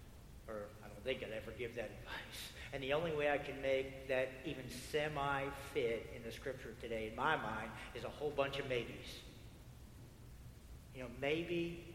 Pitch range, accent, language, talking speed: 120-150 Hz, American, English, 175 wpm